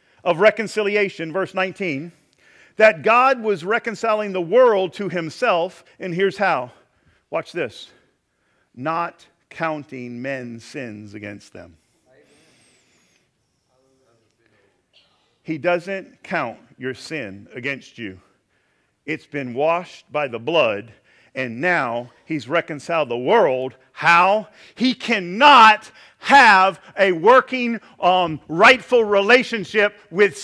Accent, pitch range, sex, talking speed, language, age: American, 175-235 Hz, male, 105 wpm, English, 50-69